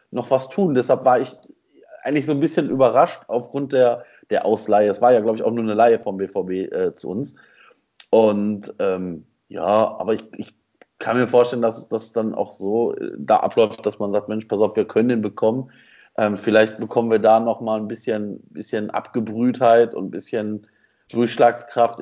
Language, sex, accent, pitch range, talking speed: German, male, German, 100-115 Hz, 195 wpm